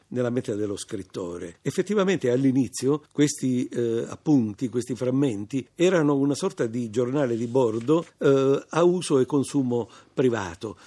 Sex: male